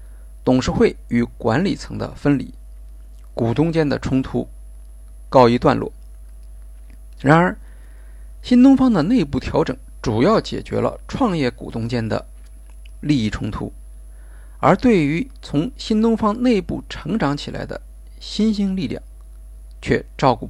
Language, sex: Chinese, male